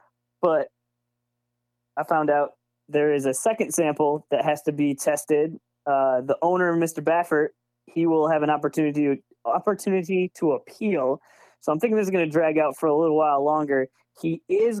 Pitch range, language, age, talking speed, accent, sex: 140-180 Hz, English, 20-39, 175 wpm, American, male